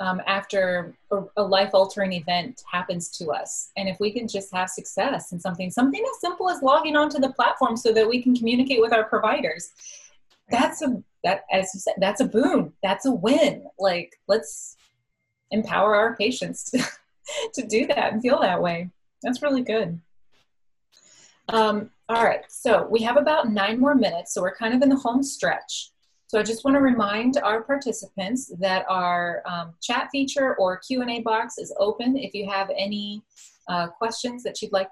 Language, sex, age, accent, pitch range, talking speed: English, female, 30-49, American, 190-250 Hz, 185 wpm